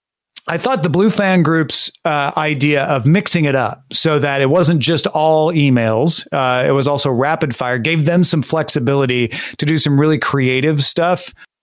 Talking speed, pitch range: 180 wpm, 130-165 Hz